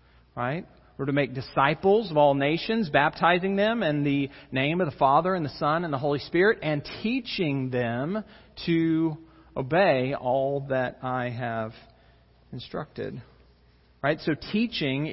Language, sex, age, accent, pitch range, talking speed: English, male, 40-59, American, 130-170 Hz, 145 wpm